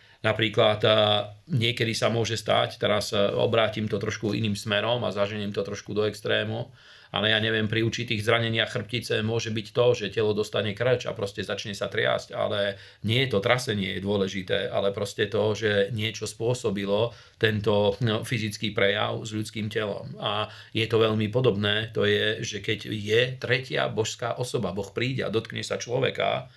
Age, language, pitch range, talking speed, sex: 40-59, Slovak, 100-115 Hz, 165 wpm, male